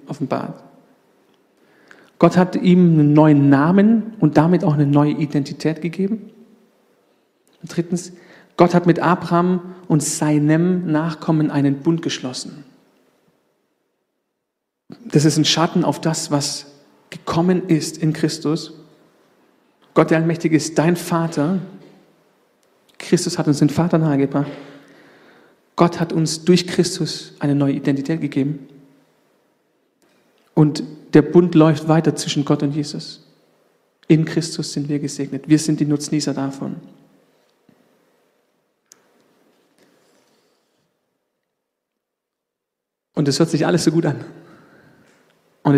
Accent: German